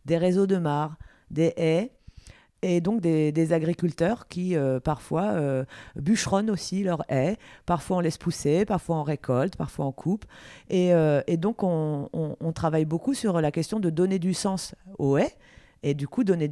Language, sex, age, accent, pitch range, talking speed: French, female, 40-59, French, 150-180 Hz, 185 wpm